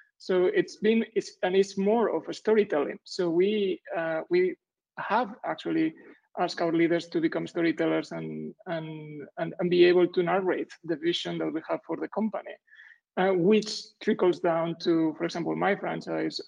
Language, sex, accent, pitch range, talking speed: English, male, Spanish, 170-225 Hz, 170 wpm